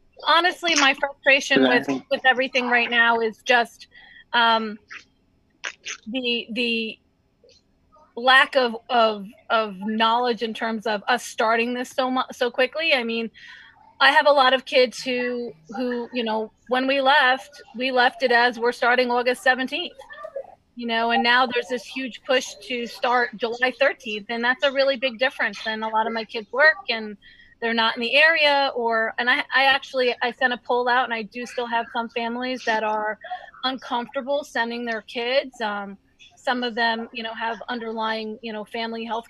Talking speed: 175 wpm